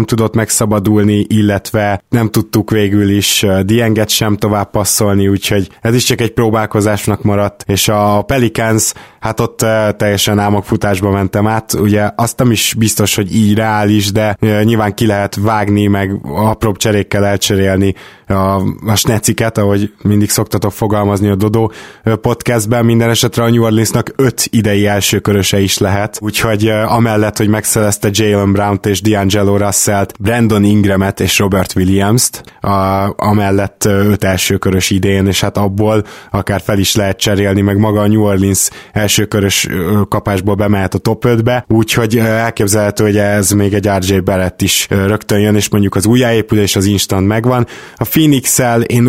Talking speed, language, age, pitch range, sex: 150 wpm, Hungarian, 20-39, 100-115 Hz, male